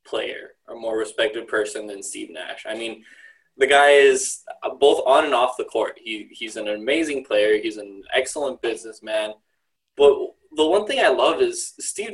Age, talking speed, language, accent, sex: 20-39, 180 wpm, English, American, male